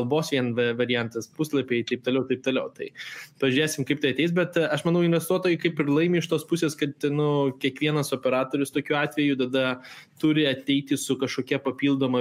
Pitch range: 125-155 Hz